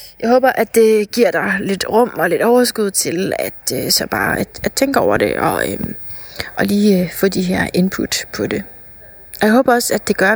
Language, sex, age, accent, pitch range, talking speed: Danish, female, 30-49, native, 185-220 Hz, 190 wpm